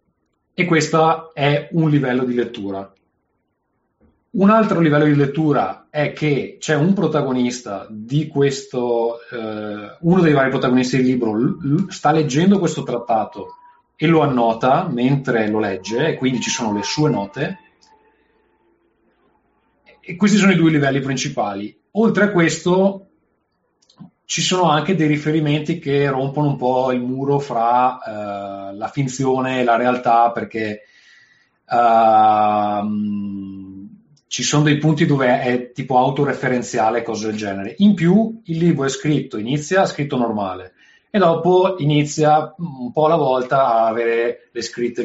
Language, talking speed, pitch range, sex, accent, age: Italian, 140 wpm, 115-150 Hz, male, native, 30-49